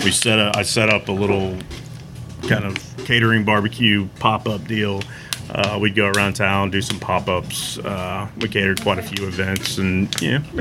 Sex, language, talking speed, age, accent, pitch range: male, English, 175 wpm, 40-59, American, 100-125 Hz